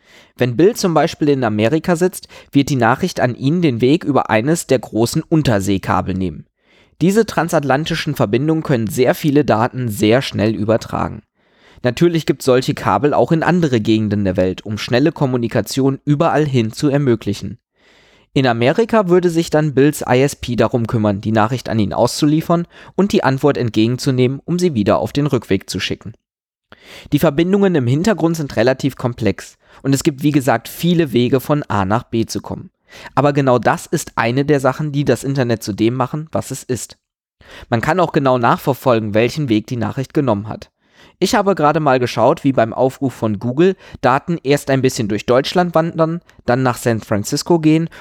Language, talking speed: German, 175 wpm